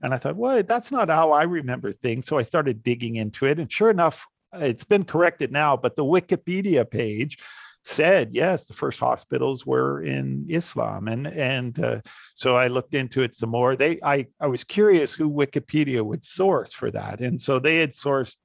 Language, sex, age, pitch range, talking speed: English, male, 50-69, 115-150 Hz, 200 wpm